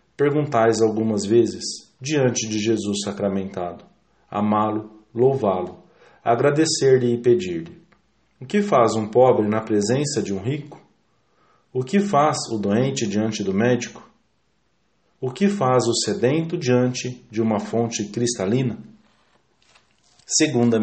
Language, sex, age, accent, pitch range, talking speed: English, male, 40-59, Brazilian, 110-140 Hz, 120 wpm